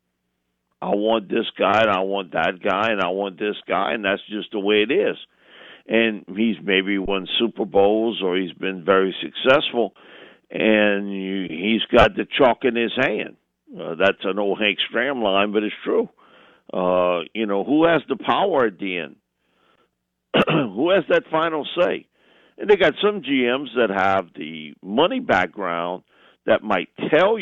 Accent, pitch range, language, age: American, 90-115 Hz, English, 50-69